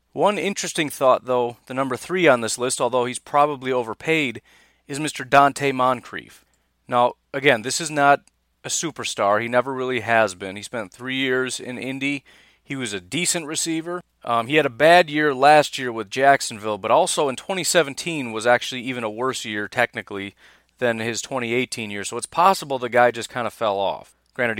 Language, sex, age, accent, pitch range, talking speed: English, male, 30-49, American, 115-145 Hz, 190 wpm